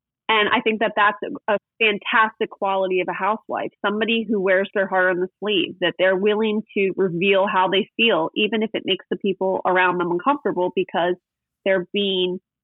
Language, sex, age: English, female, 30-49